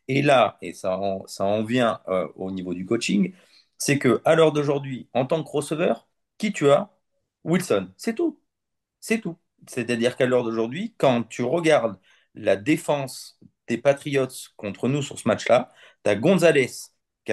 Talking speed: 170 wpm